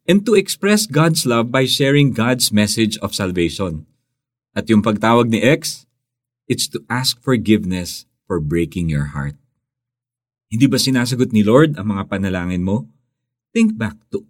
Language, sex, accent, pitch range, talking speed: Filipino, male, native, 95-135 Hz, 150 wpm